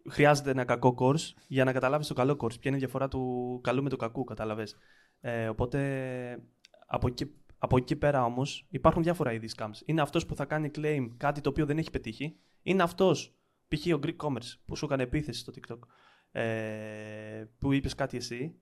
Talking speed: 195 wpm